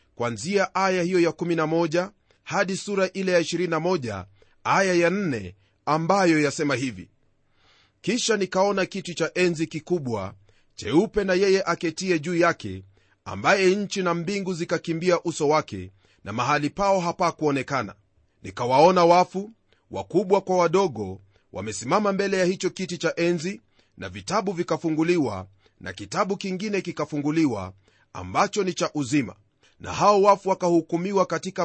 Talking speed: 130 wpm